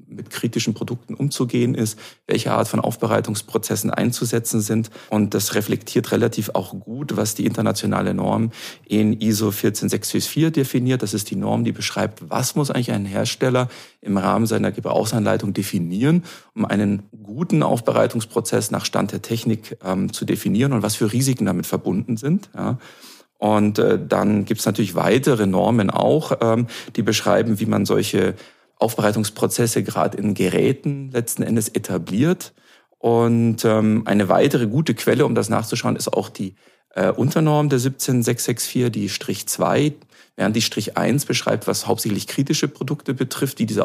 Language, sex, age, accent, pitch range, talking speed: German, male, 40-59, German, 105-120 Hz, 150 wpm